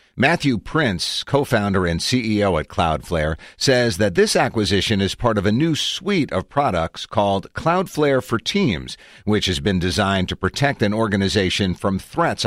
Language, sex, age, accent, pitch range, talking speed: English, male, 50-69, American, 95-125 Hz, 160 wpm